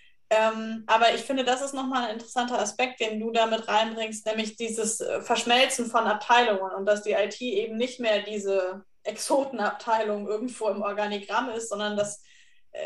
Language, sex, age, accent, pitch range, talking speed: English, female, 20-39, German, 205-240 Hz, 155 wpm